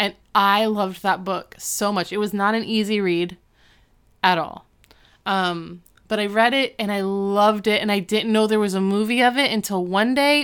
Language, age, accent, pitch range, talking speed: English, 20-39, American, 180-220 Hz, 215 wpm